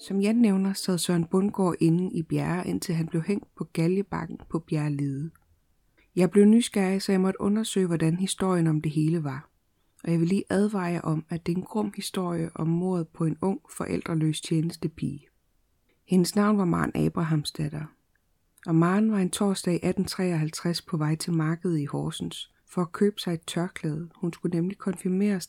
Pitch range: 155-190 Hz